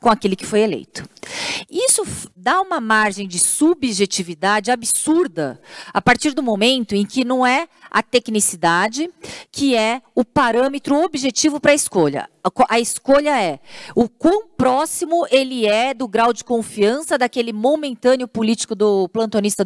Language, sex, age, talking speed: Portuguese, female, 40-59, 145 wpm